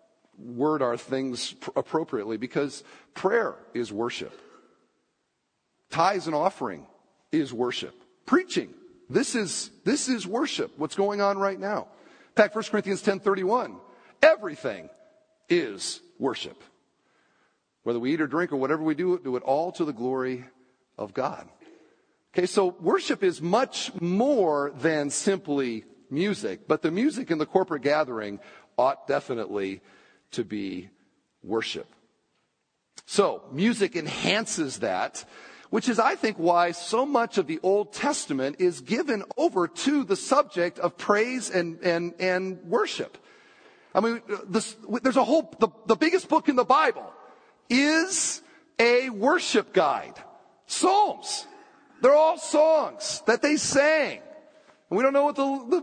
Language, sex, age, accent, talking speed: English, male, 50-69, American, 140 wpm